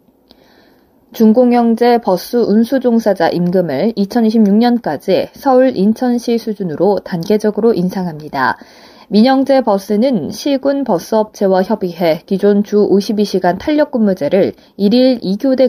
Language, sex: Korean, female